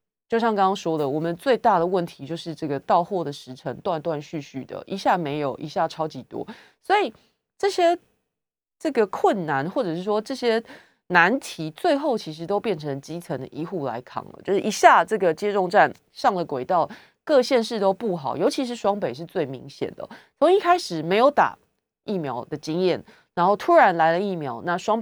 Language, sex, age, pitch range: Chinese, female, 30-49, 155-235 Hz